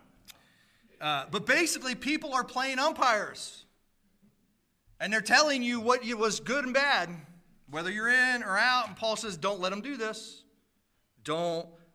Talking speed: 150 wpm